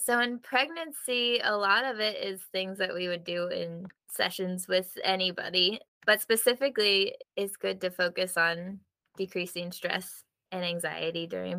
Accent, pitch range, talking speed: American, 175-205 Hz, 150 wpm